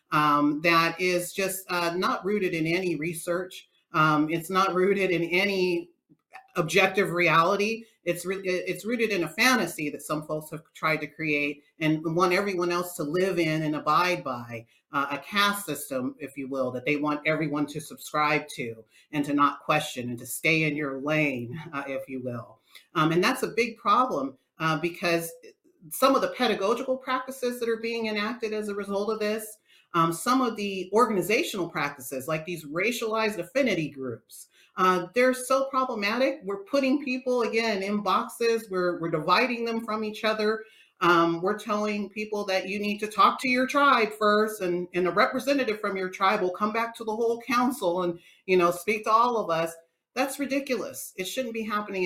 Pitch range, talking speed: 155-220 Hz, 185 wpm